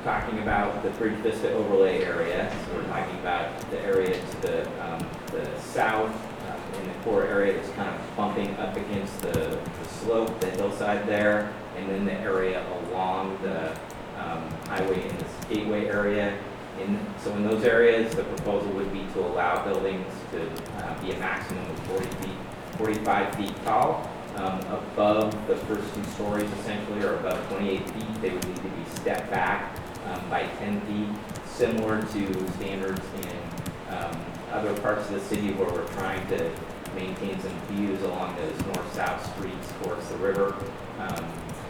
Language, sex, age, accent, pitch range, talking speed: English, male, 30-49, American, 95-115 Hz, 170 wpm